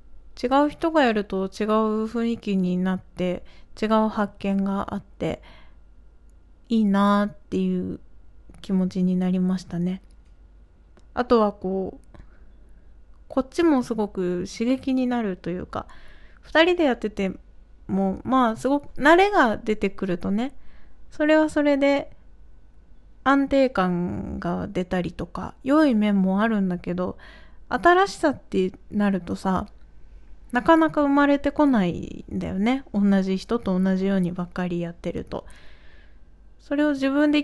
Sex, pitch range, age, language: female, 180-255 Hz, 20-39, Japanese